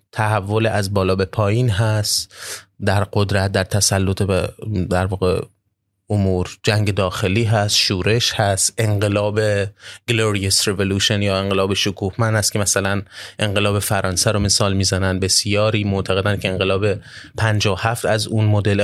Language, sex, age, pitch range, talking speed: Persian, male, 30-49, 100-115 Hz, 130 wpm